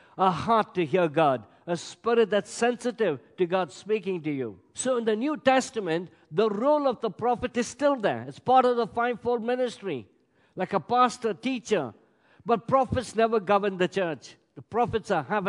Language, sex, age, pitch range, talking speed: English, male, 50-69, 190-245 Hz, 180 wpm